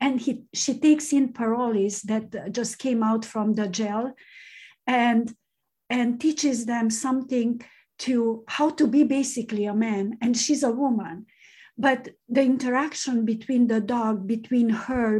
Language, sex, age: English, female, 50-69